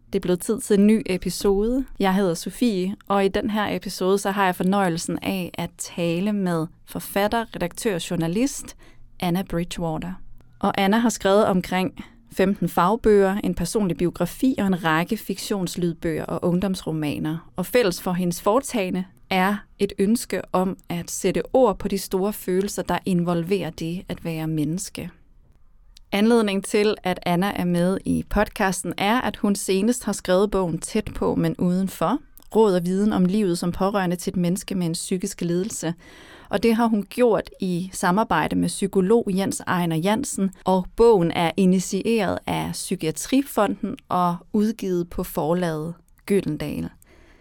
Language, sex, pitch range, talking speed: Danish, female, 175-210 Hz, 160 wpm